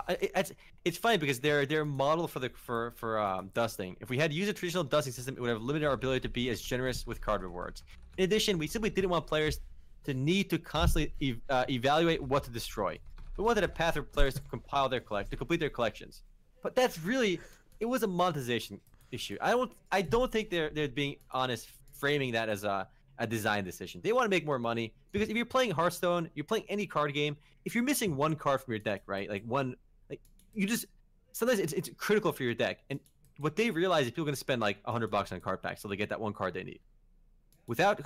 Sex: male